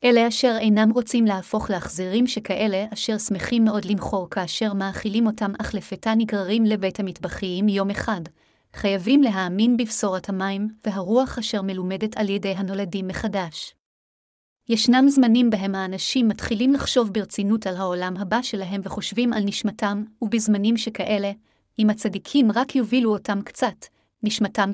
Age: 30-49